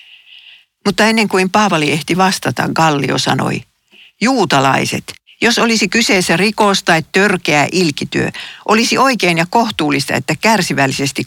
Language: Finnish